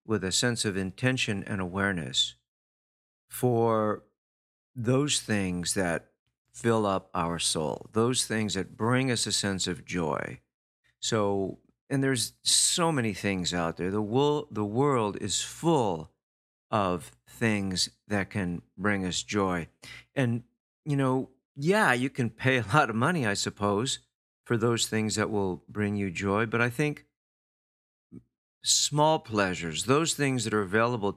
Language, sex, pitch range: English, male, 95-120 Hz